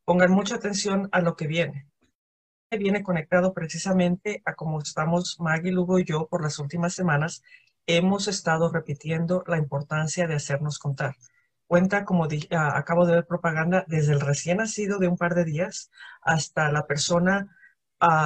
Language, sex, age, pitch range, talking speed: Spanish, female, 40-59, 155-180 Hz, 170 wpm